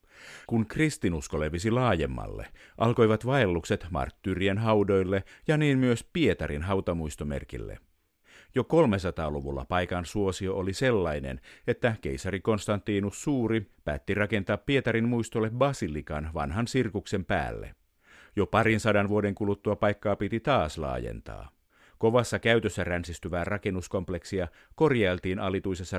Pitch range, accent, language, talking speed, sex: 90-115 Hz, native, Finnish, 105 wpm, male